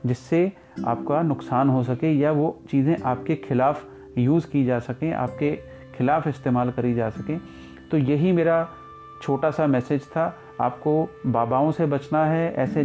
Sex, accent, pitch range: male, native, 130-155 Hz